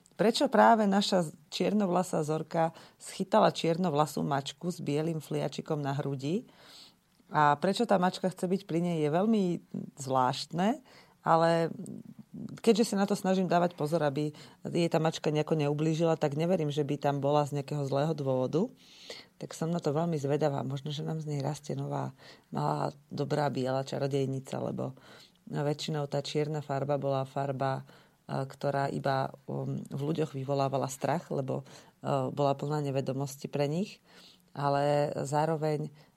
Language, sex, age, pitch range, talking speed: Slovak, female, 40-59, 140-165 Hz, 145 wpm